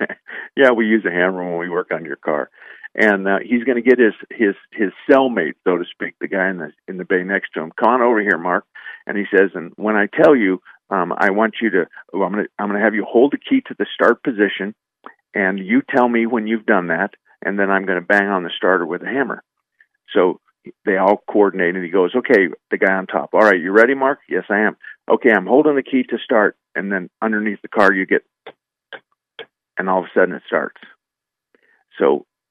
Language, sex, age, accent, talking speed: English, male, 50-69, American, 240 wpm